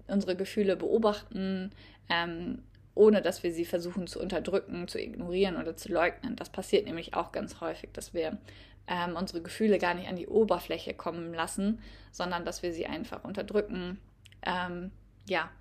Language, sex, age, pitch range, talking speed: German, female, 20-39, 170-205 Hz, 160 wpm